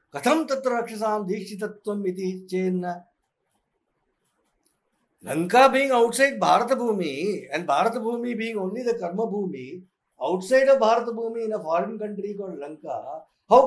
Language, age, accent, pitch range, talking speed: English, 60-79, Indian, 195-260 Hz, 130 wpm